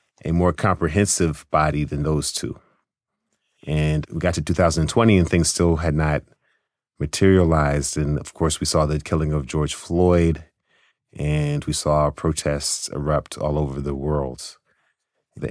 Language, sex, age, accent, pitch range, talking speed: English, male, 30-49, American, 75-85 Hz, 145 wpm